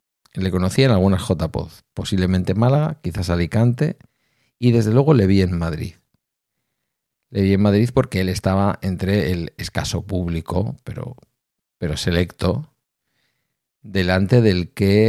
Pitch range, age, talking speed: 90-120 Hz, 50-69, 135 wpm